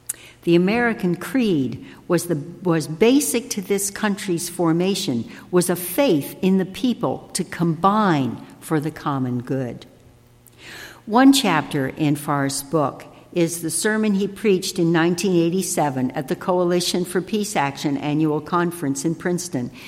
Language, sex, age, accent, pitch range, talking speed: English, female, 60-79, American, 145-200 Hz, 135 wpm